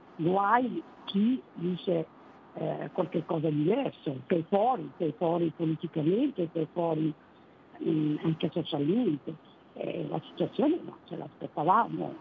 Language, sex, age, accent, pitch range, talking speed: Italian, female, 50-69, native, 160-205 Hz, 130 wpm